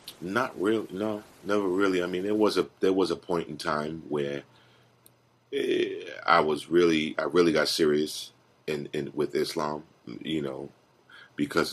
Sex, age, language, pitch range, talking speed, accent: male, 40-59, English, 70-85 Hz, 165 wpm, American